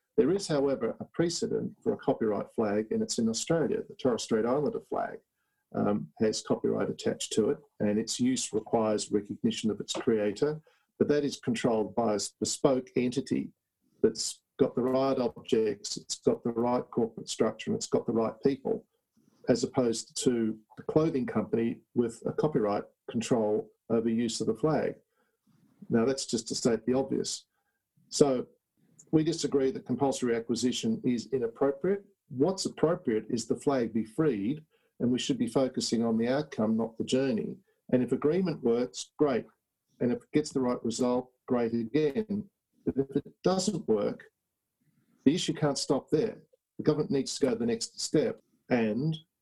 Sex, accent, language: male, Australian, English